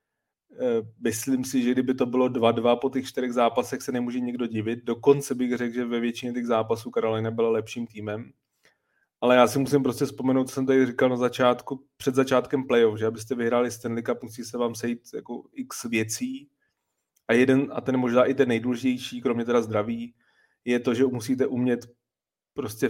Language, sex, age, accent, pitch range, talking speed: Czech, male, 30-49, native, 115-130 Hz, 185 wpm